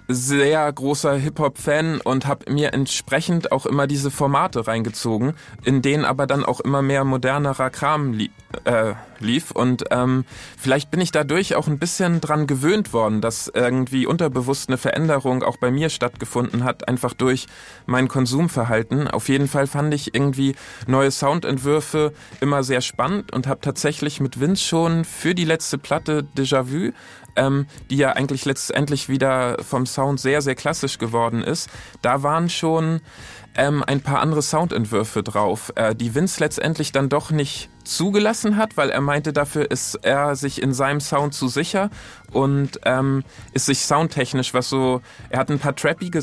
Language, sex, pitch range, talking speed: German, male, 130-155 Hz, 165 wpm